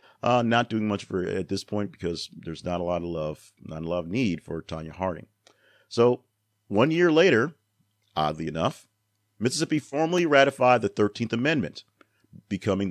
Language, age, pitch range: English, 40-59, 85-110 Hz